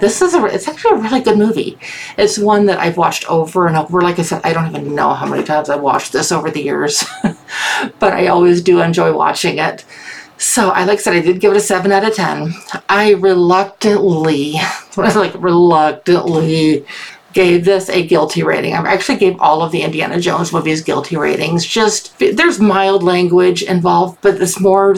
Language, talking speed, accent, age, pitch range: English, 200 wpm, American, 50-69, 170-205 Hz